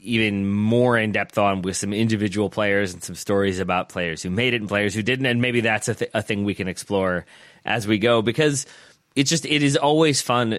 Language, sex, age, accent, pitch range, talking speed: English, male, 30-49, American, 95-120 Hz, 225 wpm